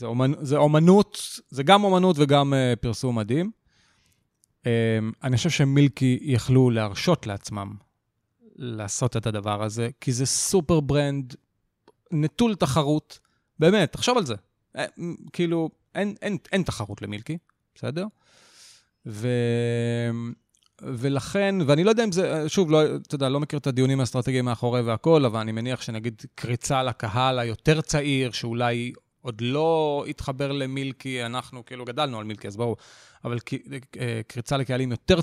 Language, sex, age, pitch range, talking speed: English, male, 30-49, 120-150 Hz, 110 wpm